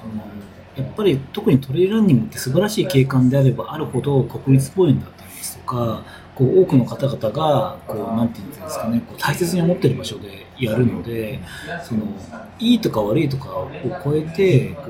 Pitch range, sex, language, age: 110-165 Hz, male, Japanese, 40-59